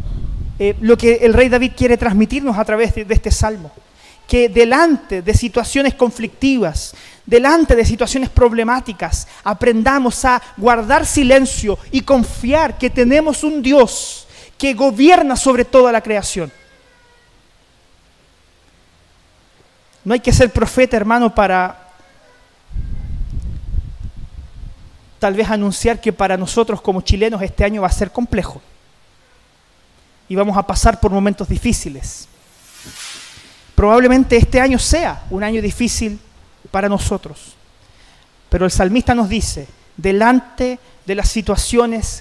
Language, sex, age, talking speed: Spanish, male, 30-49, 120 wpm